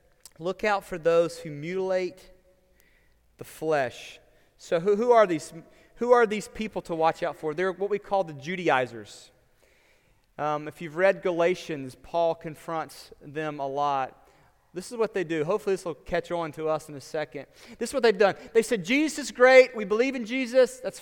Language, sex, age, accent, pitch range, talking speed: English, male, 30-49, American, 170-245 Hz, 190 wpm